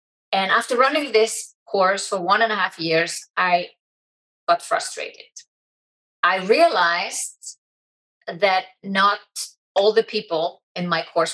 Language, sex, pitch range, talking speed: English, female, 180-230 Hz, 125 wpm